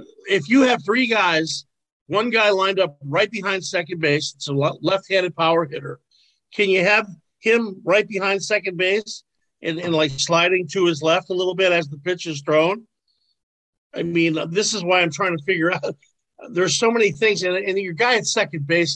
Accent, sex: American, male